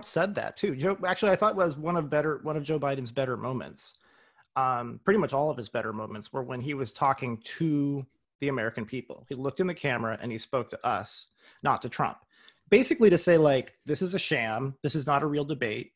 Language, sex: English, male